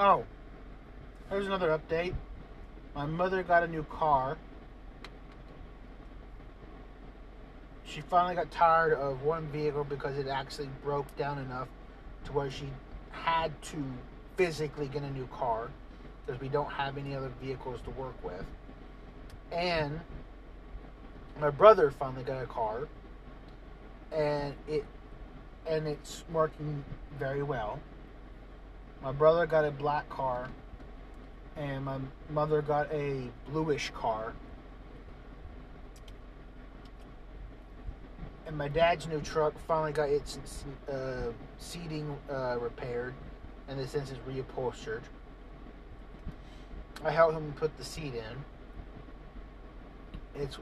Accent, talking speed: American, 115 wpm